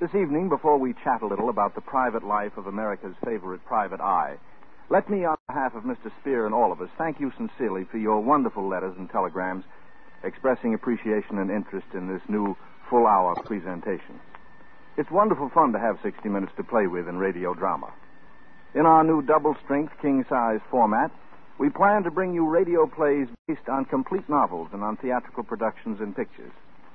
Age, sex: 60-79, male